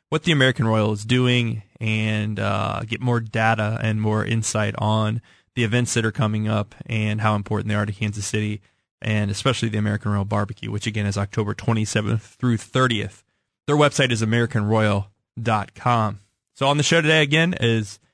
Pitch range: 110-130 Hz